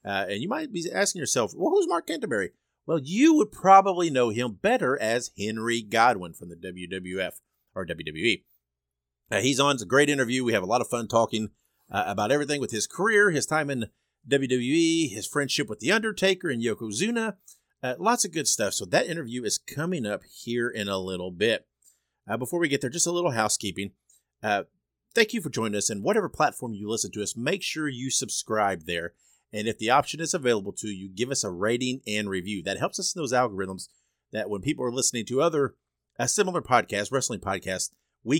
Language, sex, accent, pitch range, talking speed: English, male, American, 100-145 Hz, 210 wpm